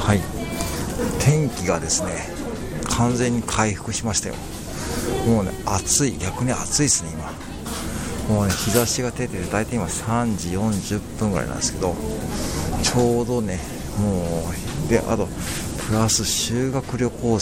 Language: Japanese